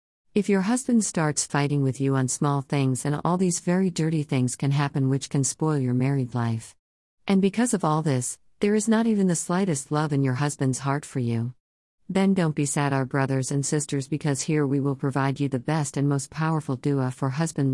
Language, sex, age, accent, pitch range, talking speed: English, female, 50-69, American, 130-165 Hz, 215 wpm